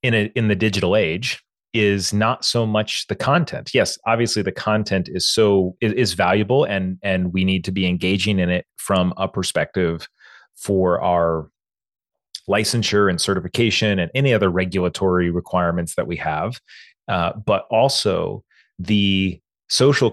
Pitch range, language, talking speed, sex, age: 90-105 Hz, English, 145 wpm, male, 30-49